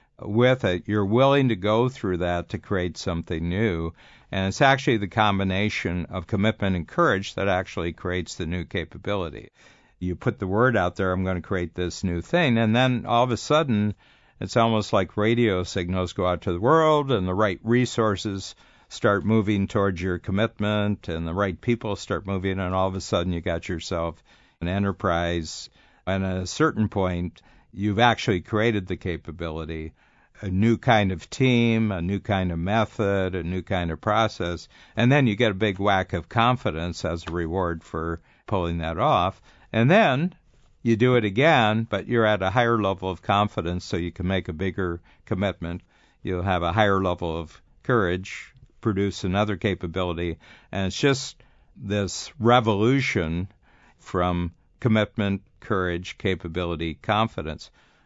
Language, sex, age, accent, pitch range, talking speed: English, male, 60-79, American, 90-110 Hz, 170 wpm